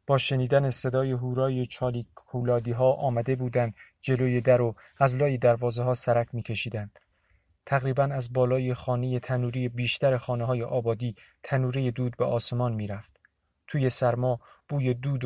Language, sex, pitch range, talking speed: Persian, male, 120-130 Hz, 145 wpm